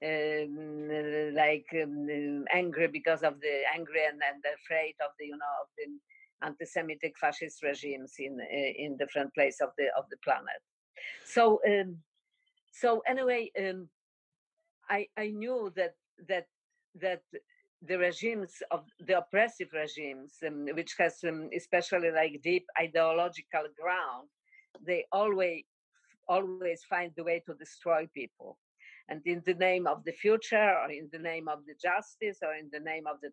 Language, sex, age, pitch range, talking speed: English, female, 50-69, 155-200 Hz, 150 wpm